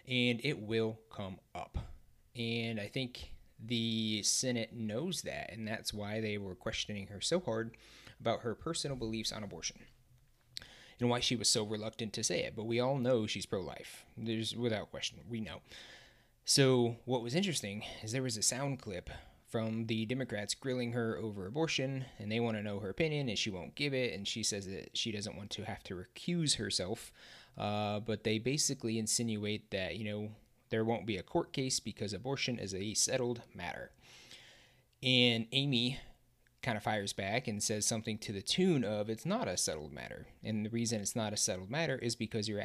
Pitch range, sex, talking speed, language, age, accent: 105-125 Hz, male, 195 wpm, English, 20-39, American